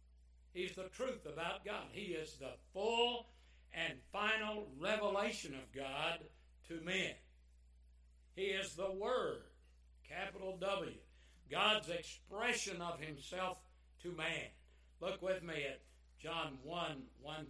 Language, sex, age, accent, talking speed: English, male, 60-79, American, 120 wpm